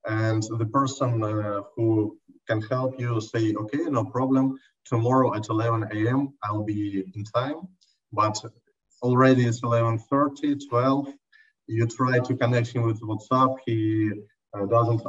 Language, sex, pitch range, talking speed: English, male, 110-130 Hz, 135 wpm